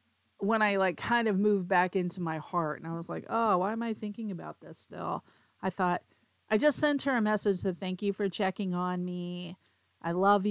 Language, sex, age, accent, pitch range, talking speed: English, female, 40-59, American, 175-215 Hz, 225 wpm